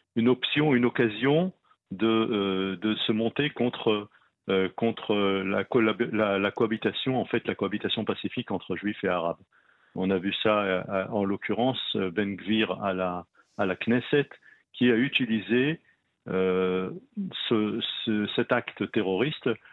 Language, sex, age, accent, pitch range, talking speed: French, male, 50-69, French, 100-125 Hz, 135 wpm